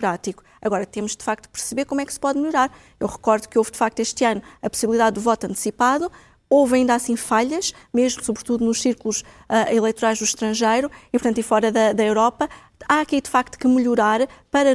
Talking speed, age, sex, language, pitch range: 205 wpm, 20-39, female, Portuguese, 220-255 Hz